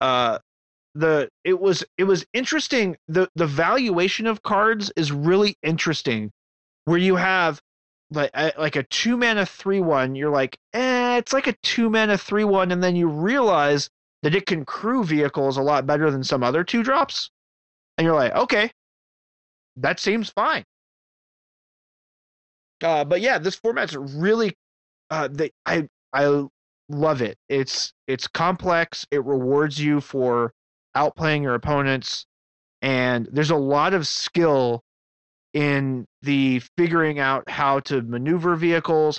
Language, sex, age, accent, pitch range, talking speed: English, male, 30-49, American, 130-180 Hz, 145 wpm